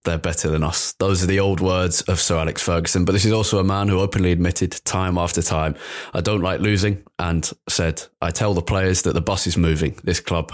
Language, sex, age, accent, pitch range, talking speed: English, male, 20-39, British, 80-100 Hz, 240 wpm